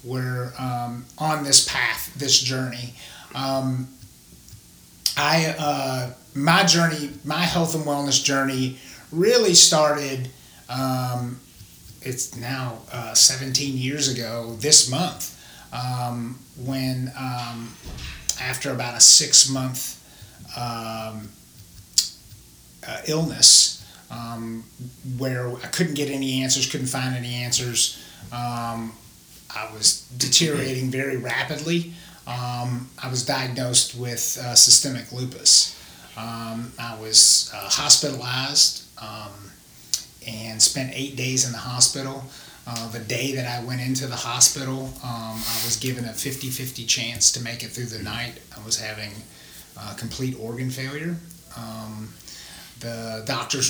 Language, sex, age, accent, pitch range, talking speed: English, male, 30-49, American, 115-135 Hz, 120 wpm